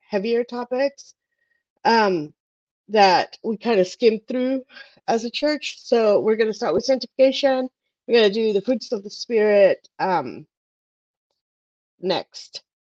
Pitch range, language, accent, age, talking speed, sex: 200-280 Hz, English, American, 30-49, 140 wpm, female